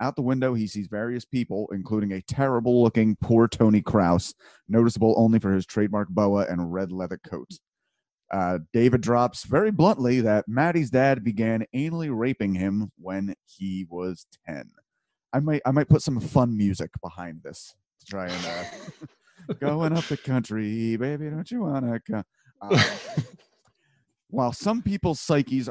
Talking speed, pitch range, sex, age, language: 155 wpm, 95-130 Hz, male, 30-49, English